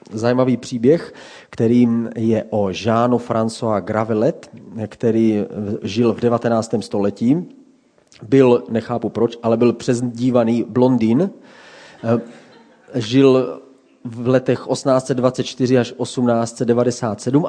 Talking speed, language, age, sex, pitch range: 90 wpm, Czech, 30-49, male, 115-135 Hz